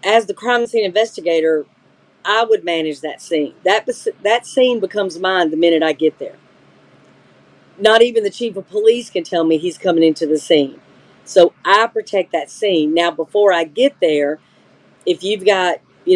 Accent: American